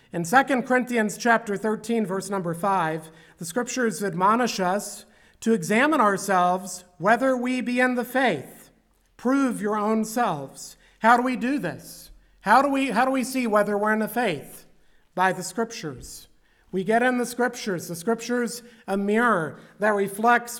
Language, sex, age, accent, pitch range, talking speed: English, male, 50-69, American, 185-245 Hz, 165 wpm